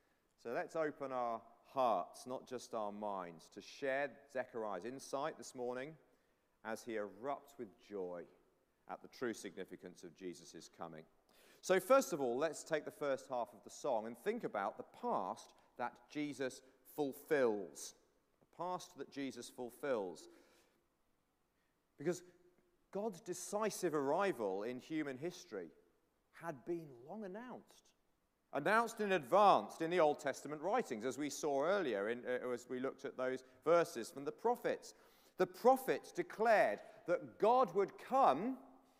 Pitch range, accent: 125-190 Hz, British